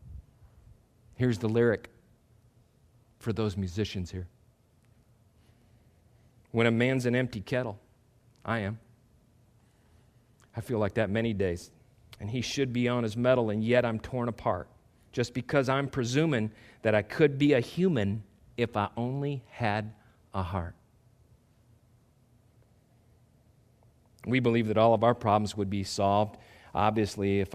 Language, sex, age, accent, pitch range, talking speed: English, male, 40-59, American, 105-125 Hz, 135 wpm